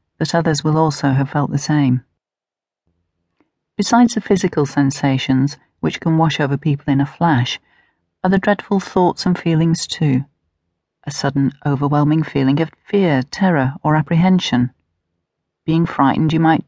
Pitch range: 140-180 Hz